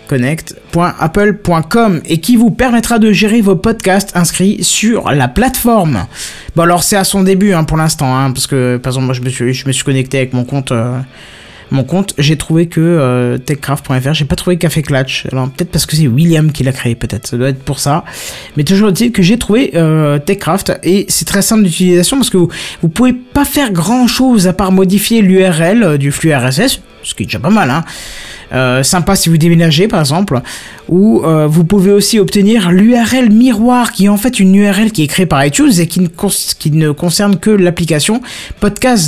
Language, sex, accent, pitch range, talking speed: French, male, French, 145-200 Hz, 210 wpm